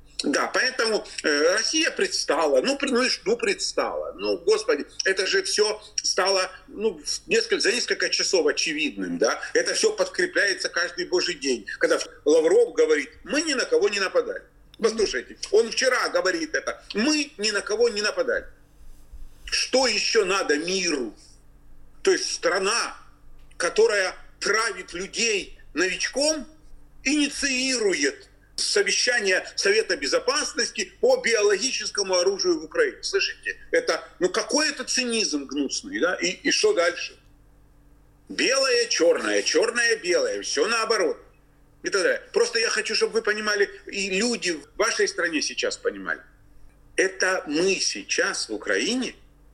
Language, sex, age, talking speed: Russian, male, 40-59, 125 wpm